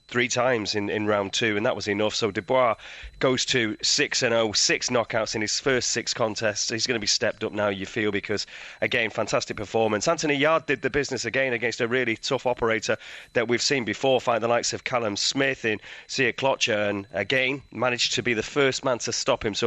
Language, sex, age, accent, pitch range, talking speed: English, male, 30-49, British, 110-135 Hz, 215 wpm